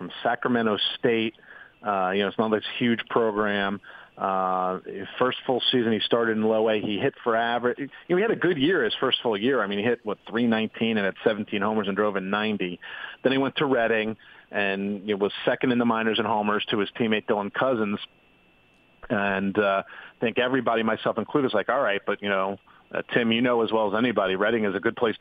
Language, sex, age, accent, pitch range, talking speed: English, male, 40-59, American, 100-120 Hz, 225 wpm